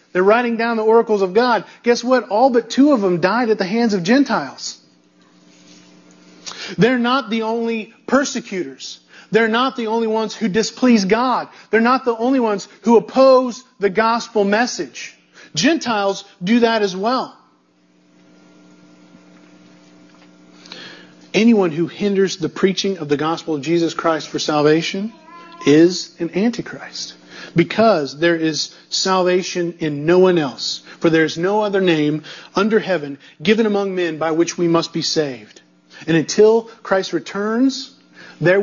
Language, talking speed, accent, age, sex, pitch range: English, 145 wpm, American, 40-59, male, 145-225 Hz